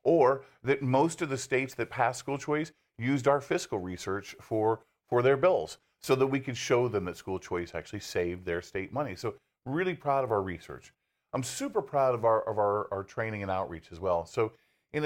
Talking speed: 210 wpm